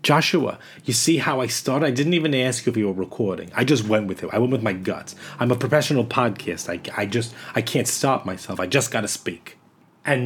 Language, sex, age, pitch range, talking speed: English, male, 30-49, 120-170 Hz, 245 wpm